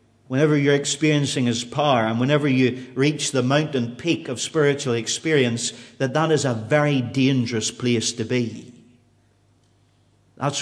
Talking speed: 140 wpm